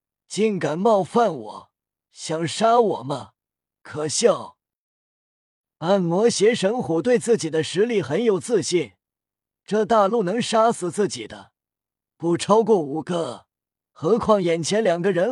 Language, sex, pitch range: Chinese, male, 155-220 Hz